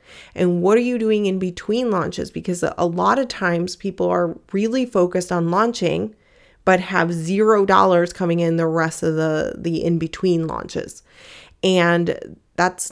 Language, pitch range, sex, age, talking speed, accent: English, 165-190 Hz, female, 20-39, 165 wpm, American